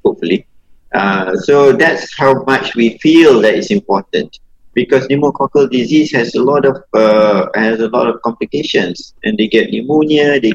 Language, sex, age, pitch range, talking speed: English, male, 50-69, 110-160 Hz, 165 wpm